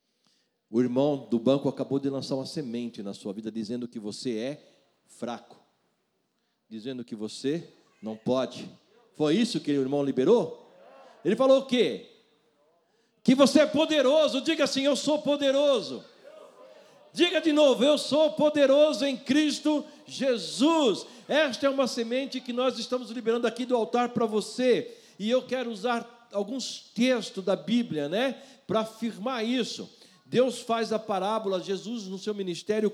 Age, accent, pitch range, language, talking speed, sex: 60-79, Brazilian, 160-250 Hz, Portuguese, 150 wpm, male